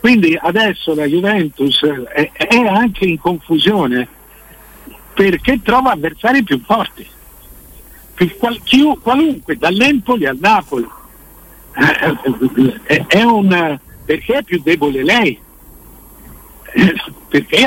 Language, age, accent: Italian, 60-79, native